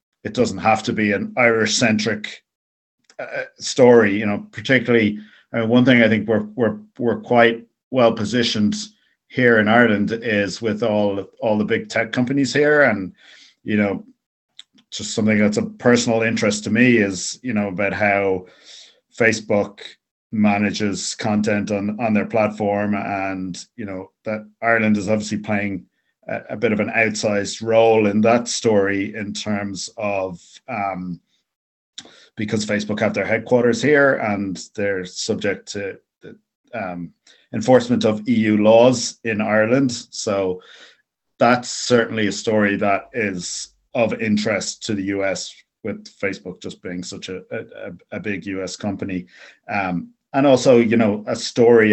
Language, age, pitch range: English, 50-69, 100-115 Hz